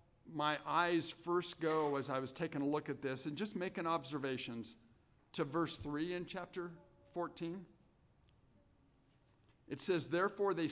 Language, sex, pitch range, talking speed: English, male, 135-170 Hz, 145 wpm